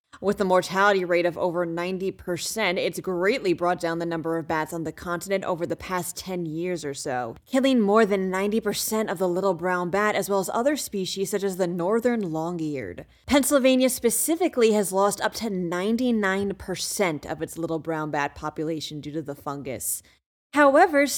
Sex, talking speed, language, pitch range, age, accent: female, 175 wpm, English, 175-250 Hz, 20-39, American